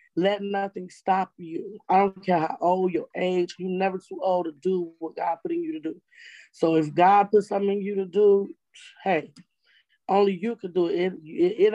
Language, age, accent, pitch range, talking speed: English, 20-39, American, 175-205 Hz, 215 wpm